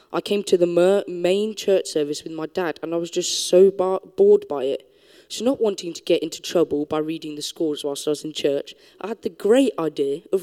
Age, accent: 10-29, British